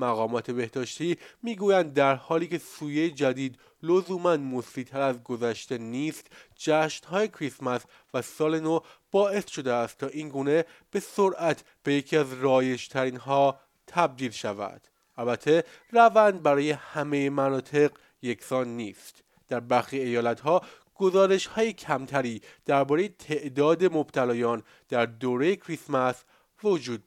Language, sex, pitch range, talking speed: Persian, male, 125-170 Hz, 115 wpm